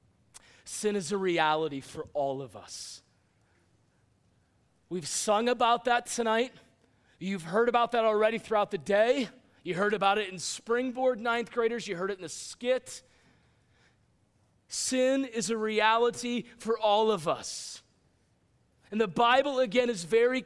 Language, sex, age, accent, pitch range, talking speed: English, male, 30-49, American, 215-265 Hz, 145 wpm